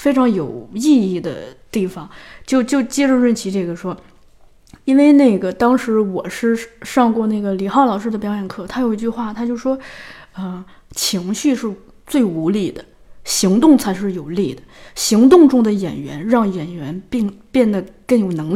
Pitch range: 195-245 Hz